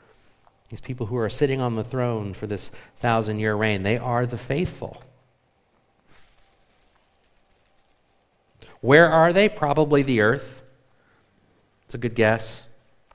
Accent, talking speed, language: American, 125 wpm, English